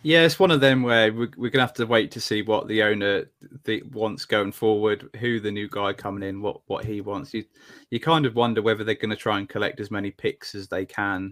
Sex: male